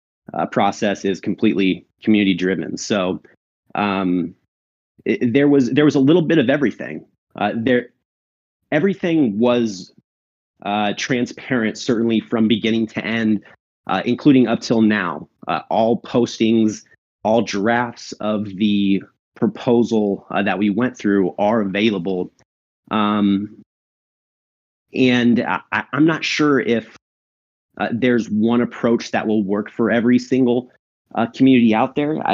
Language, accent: English, American